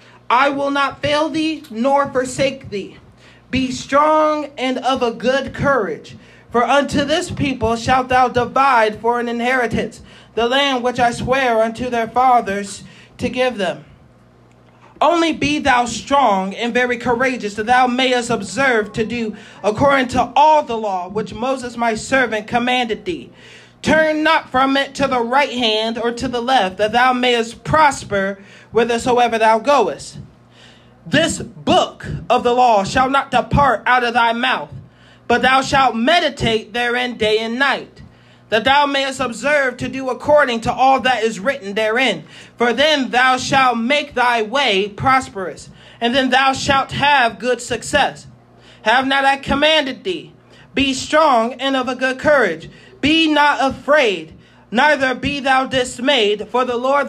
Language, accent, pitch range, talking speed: English, American, 235-275 Hz, 155 wpm